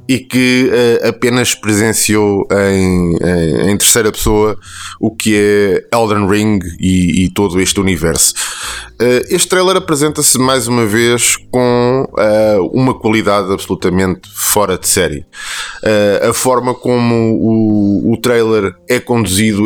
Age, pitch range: 20-39, 105-130 Hz